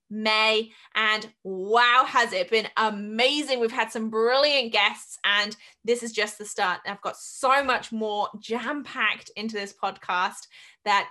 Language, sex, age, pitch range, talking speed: English, female, 20-39, 205-245 Hz, 150 wpm